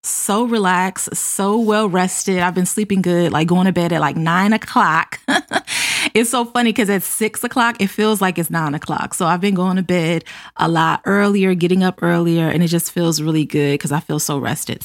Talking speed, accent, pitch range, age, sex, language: 215 wpm, American, 170-215 Hz, 20-39, female, English